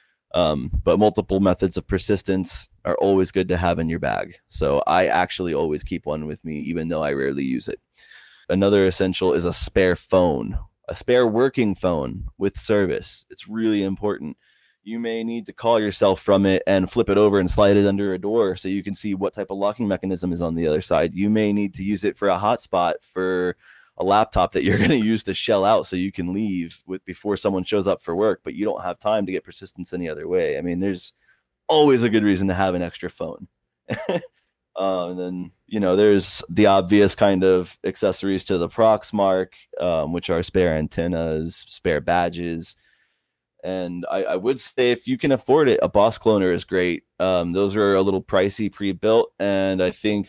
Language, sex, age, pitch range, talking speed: English, male, 20-39, 90-105 Hz, 210 wpm